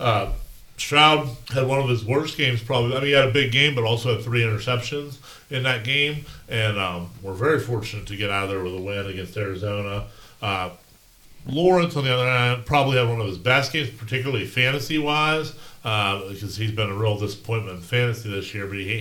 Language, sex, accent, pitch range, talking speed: English, male, American, 100-130 Hz, 210 wpm